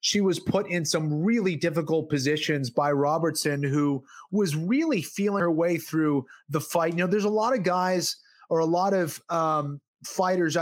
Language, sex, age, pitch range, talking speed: English, male, 30-49, 160-205 Hz, 180 wpm